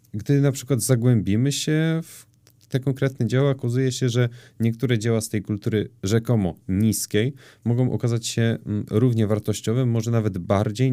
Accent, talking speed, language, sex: native, 150 wpm, Polish, male